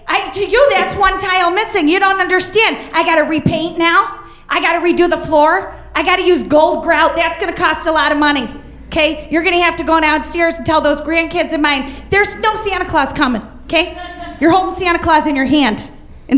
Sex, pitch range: female, 300-395 Hz